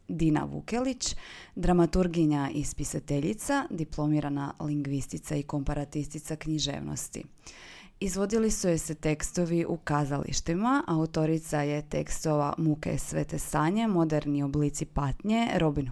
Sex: female